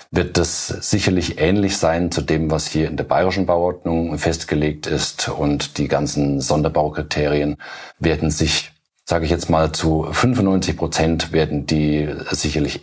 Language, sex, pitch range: German, male, 75-90 Hz